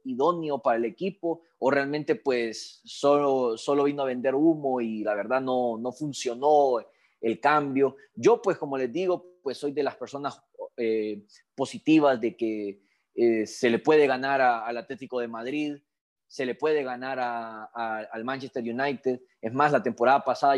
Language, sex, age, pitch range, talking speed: Spanish, male, 20-39, 125-165 Hz, 170 wpm